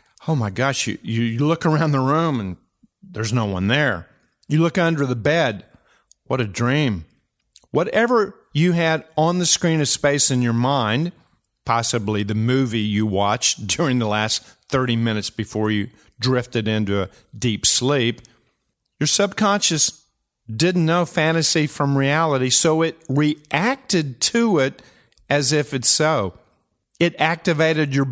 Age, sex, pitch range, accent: 50-69, male, 115-155 Hz, American